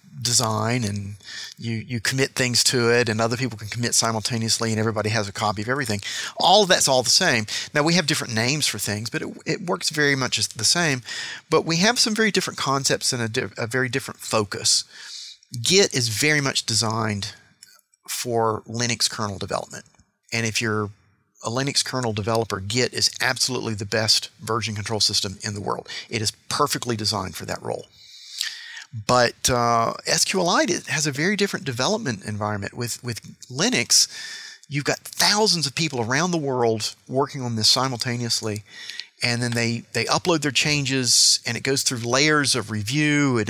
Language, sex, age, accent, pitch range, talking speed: English, male, 40-59, American, 110-135 Hz, 175 wpm